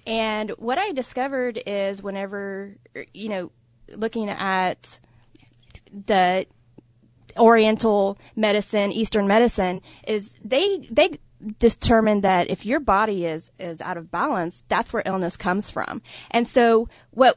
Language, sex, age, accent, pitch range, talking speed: English, female, 30-49, American, 180-230 Hz, 125 wpm